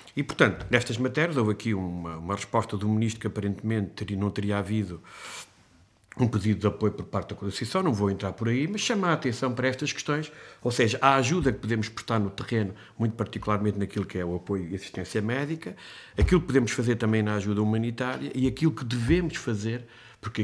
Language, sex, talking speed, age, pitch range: Portuguese, male, 205 wpm, 50-69, 105-130 Hz